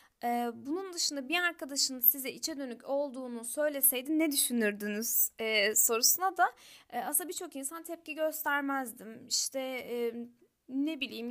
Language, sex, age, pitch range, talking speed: Turkish, female, 10-29, 235-295 Hz, 125 wpm